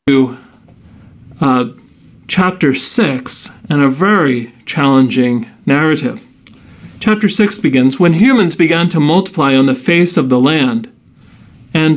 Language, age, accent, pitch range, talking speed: English, 40-59, American, 140-200 Hz, 120 wpm